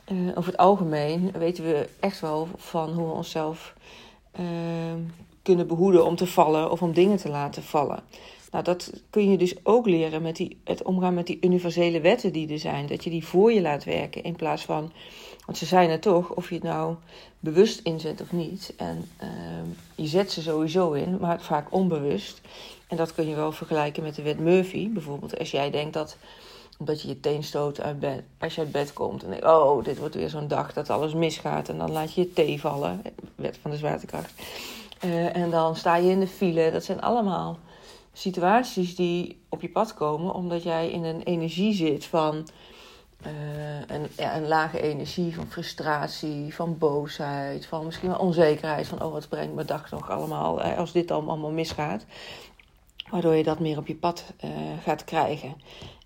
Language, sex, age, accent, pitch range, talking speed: Dutch, female, 40-59, Dutch, 155-180 Hz, 190 wpm